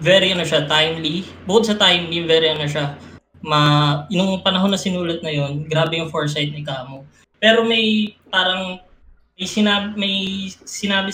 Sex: female